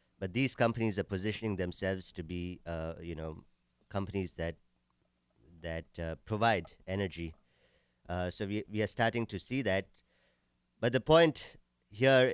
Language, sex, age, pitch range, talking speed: English, male, 50-69, 85-110 Hz, 145 wpm